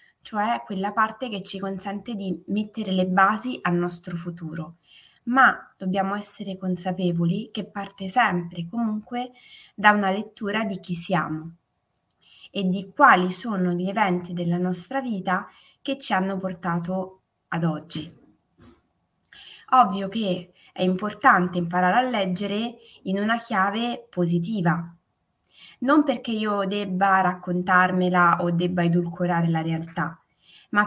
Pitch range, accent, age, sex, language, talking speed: 175-210 Hz, native, 20-39, female, Italian, 125 wpm